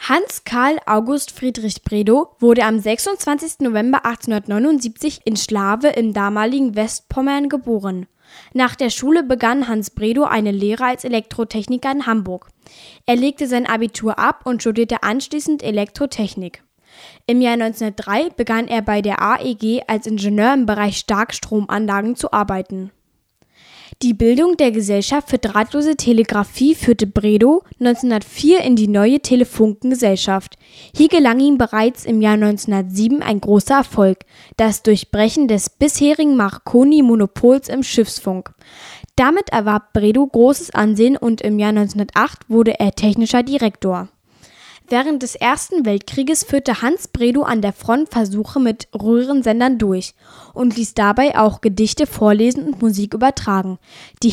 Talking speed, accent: 135 wpm, German